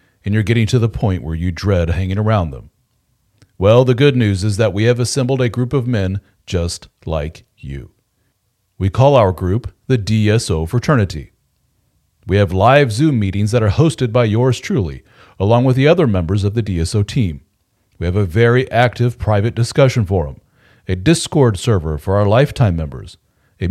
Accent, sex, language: American, male, English